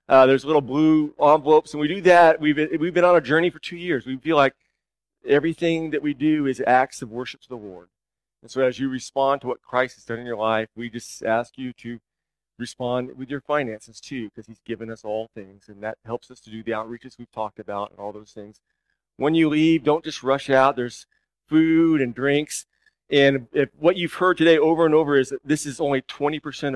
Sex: male